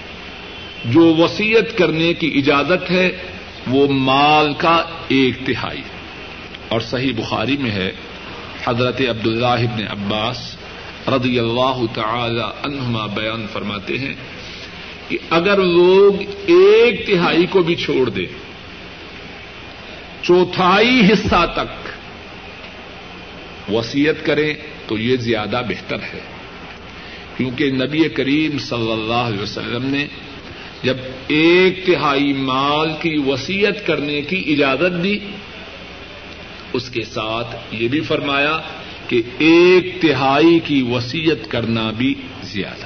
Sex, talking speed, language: male, 110 wpm, Urdu